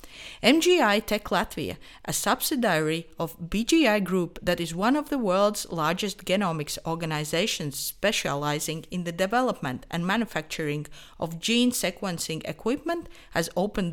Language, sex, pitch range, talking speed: English, female, 165-225 Hz, 125 wpm